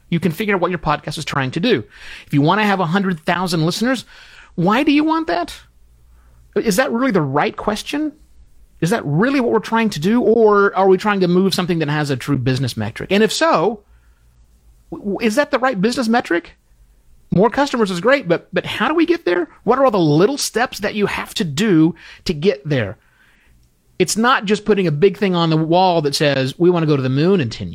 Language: English